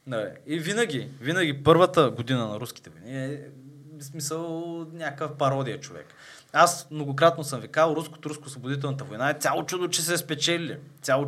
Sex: male